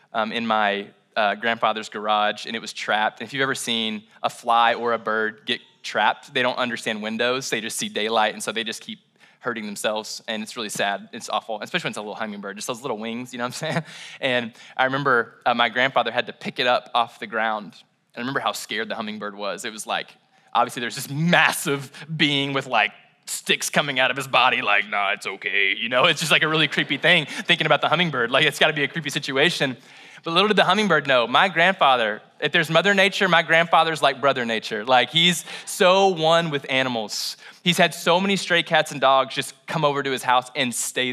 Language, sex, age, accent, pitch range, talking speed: English, male, 20-39, American, 115-165 Hz, 230 wpm